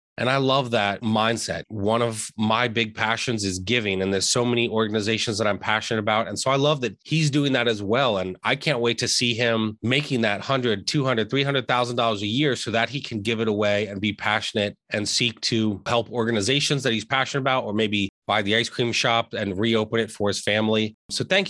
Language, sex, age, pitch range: English, male, 30-49, 110-130 Hz